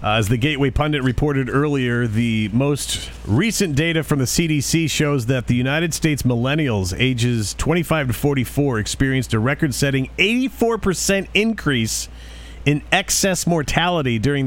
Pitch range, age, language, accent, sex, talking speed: 105-145 Hz, 40-59, English, American, male, 135 wpm